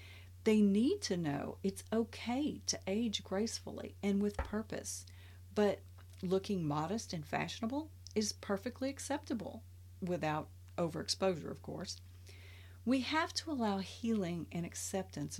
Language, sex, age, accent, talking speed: English, female, 40-59, American, 120 wpm